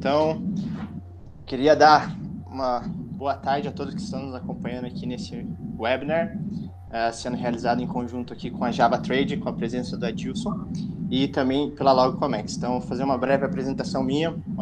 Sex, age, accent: male, 20-39, Brazilian